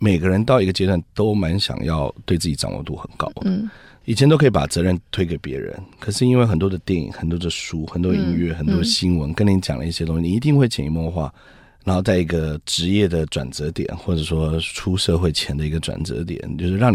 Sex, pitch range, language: male, 80-110 Hz, Chinese